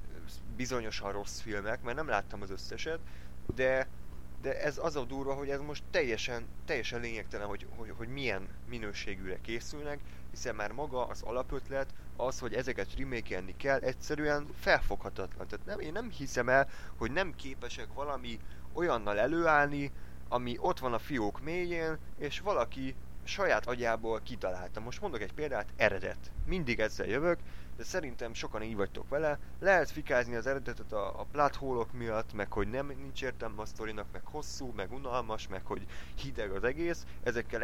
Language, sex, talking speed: Hungarian, male, 160 wpm